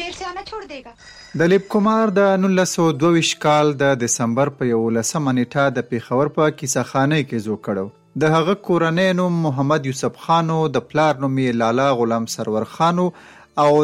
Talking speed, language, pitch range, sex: 160 wpm, Urdu, 125-160 Hz, male